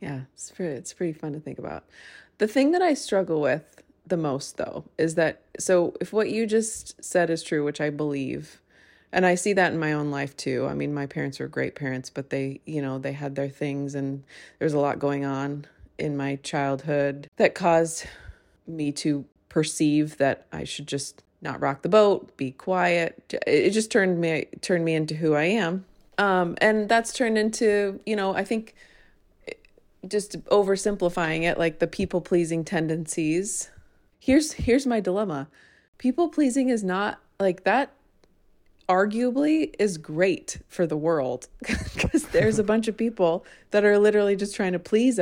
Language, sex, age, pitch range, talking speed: English, female, 20-39, 145-210 Hz, 175 wpm